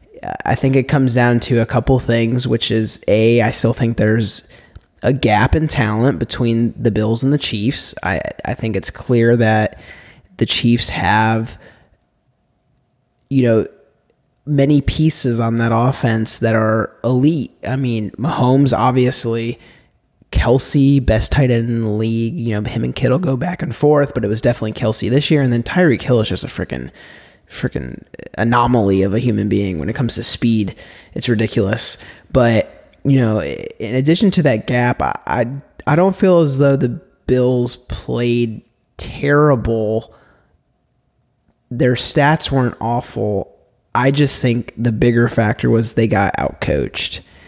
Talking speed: 160 wpm